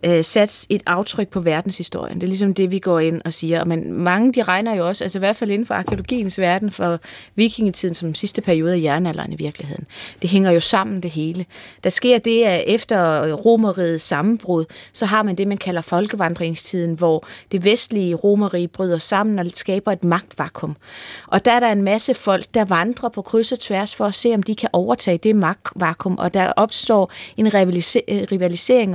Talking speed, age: 195 wpm, 20-39